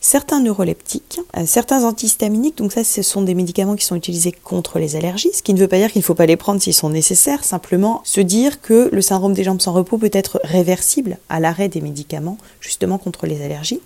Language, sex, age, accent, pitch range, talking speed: French, female, 30-49, French, 175-215 Hz, 230 wpm